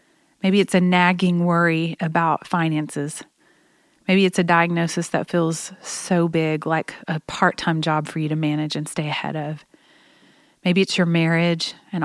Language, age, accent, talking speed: English, 30-49, American, 160 wpm